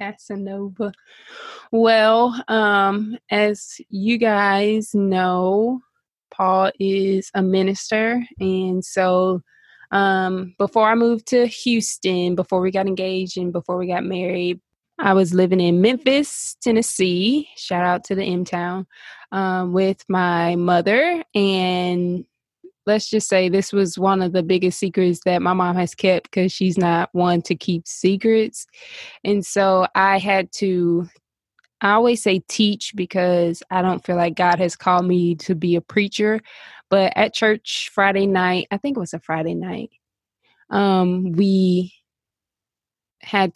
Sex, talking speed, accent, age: female, 140 wpm, American, 20-39